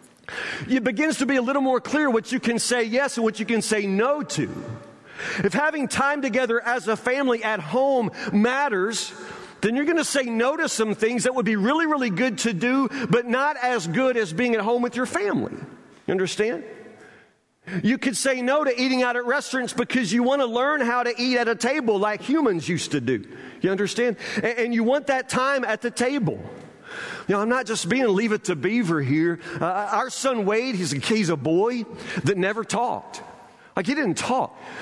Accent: American